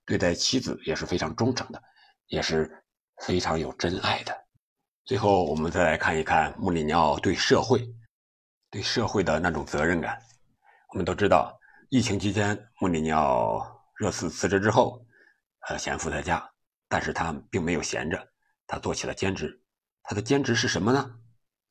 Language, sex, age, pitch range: Chinese, male, 50-69, 90-120 Hz